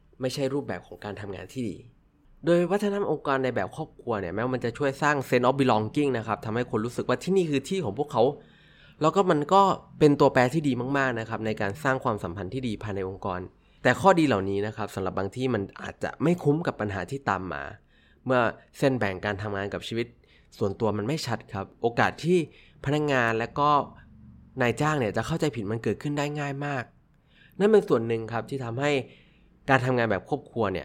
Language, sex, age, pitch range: Thai, male, 20-39, 105-140 Hz